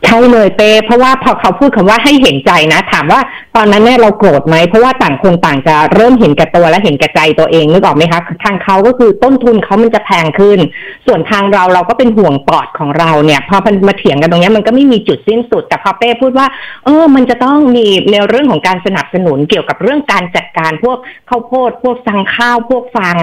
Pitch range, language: 175-240 Hz, Thai